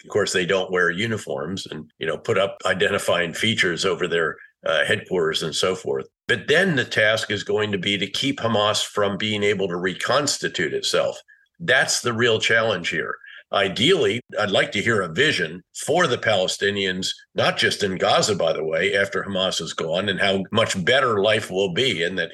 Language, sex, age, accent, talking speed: English, male, 50-69, American, 195 wpm